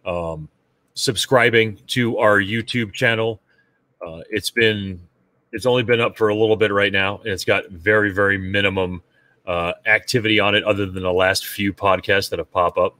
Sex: male